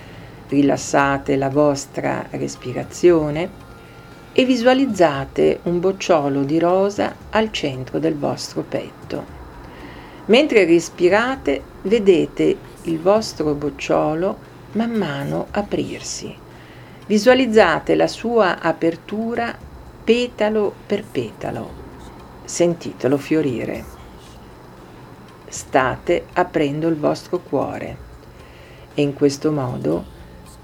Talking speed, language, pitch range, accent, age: 80 wpm, Italian, 135-180 Hz, native, 50-69